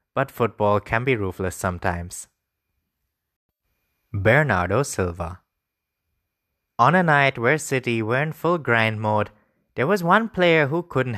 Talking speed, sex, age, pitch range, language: 130 wpm, male, 20-39, 95-135 Hz, English